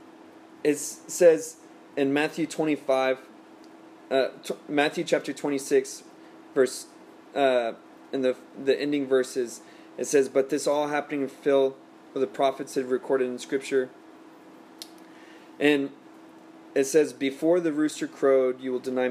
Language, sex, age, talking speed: English, male, 20-39, 130 wpm